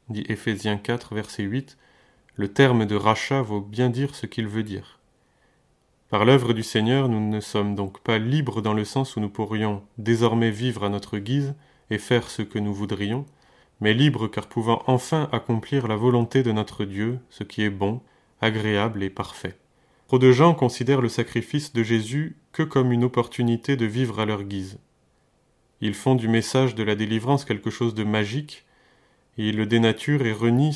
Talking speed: 185 wpm